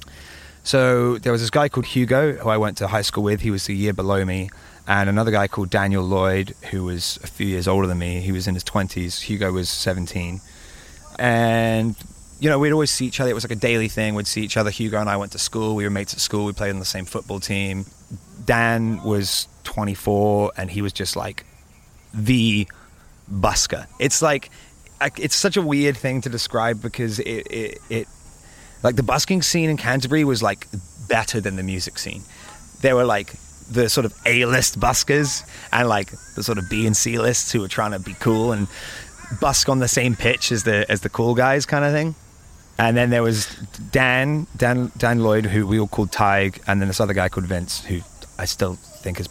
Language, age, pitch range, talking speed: English, 20-39, 95-120 Hz, 215 wpm